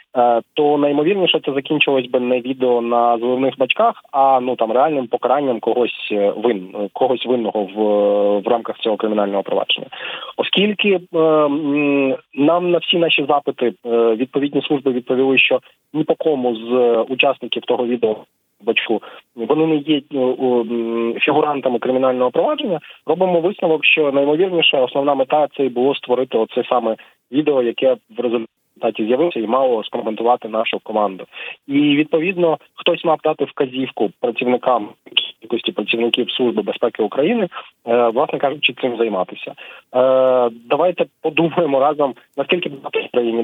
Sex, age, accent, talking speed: male, 20-39, native, 125 wpm